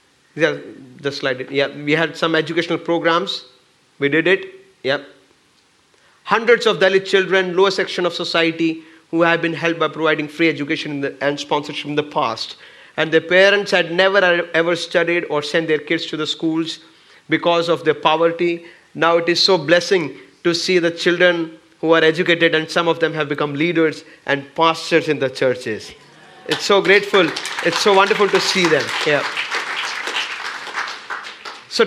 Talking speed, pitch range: 165 wpm, 160-195 Hz